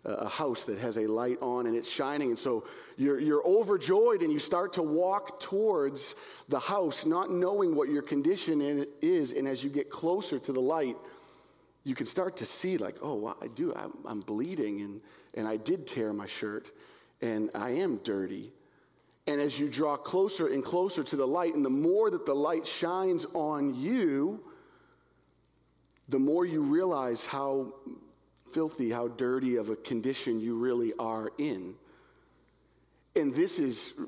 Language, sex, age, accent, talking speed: English, male, 40-59, American, 170 wpm